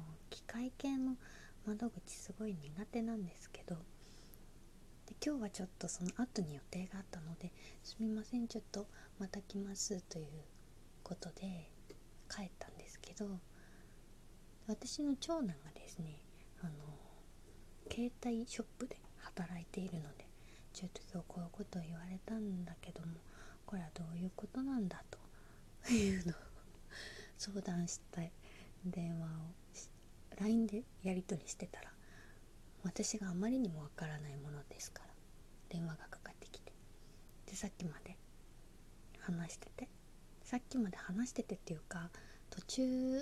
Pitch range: 170-220 Hz